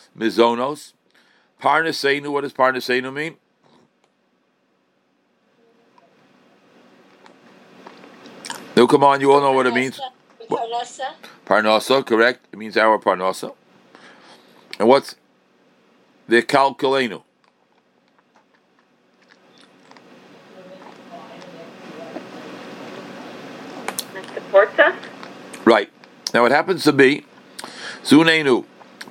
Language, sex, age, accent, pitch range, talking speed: English, male, 60-79, American, 115-140 Hz, 65 wpm